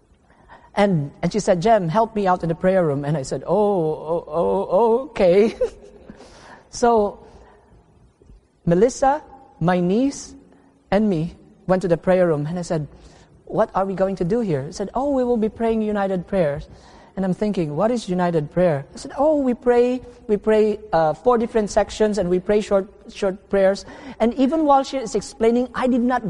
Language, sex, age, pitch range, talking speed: English, male, 40-59, 180-245 Hz, 185 wpm